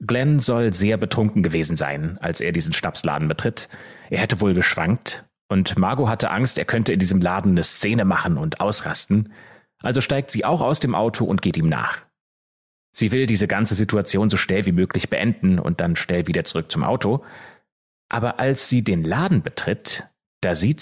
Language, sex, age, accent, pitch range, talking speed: German, male, 30-49, German, 90-120 Hz, 185 wpm